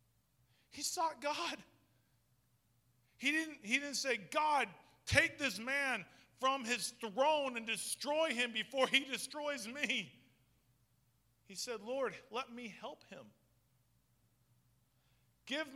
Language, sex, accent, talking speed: English, male, American, 110 wpm